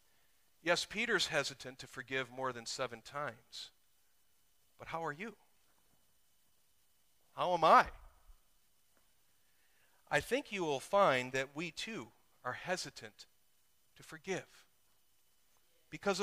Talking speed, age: 105 wpm, 40-59